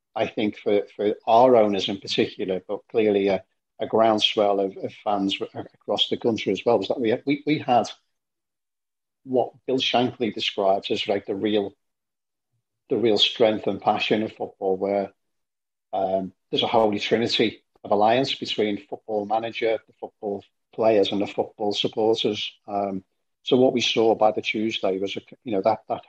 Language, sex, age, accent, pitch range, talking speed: English, male, 50-69, British, 100-110 Hz, 170 wpm